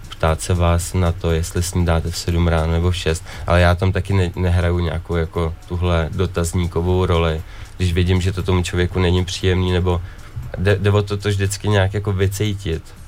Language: Czech